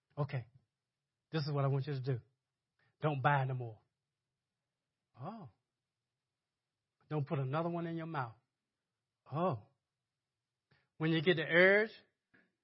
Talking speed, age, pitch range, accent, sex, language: 130 wpm, 40-59, 130-185 Hz, American, male, English